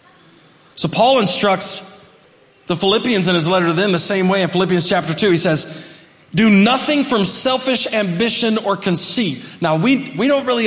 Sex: male